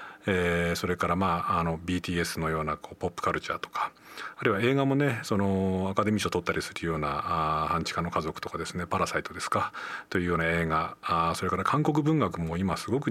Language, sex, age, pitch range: Japanese, male, 40-59, 85-115 Hz